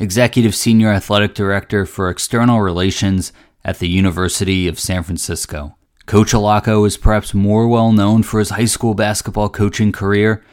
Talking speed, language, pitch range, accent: 155 wpm, English, 90-105 Hz, American